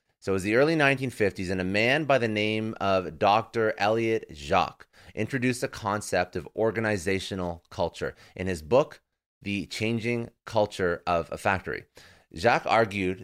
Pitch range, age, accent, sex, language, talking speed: 95-115 Hz, 30-49, American, male, English, 150 wpm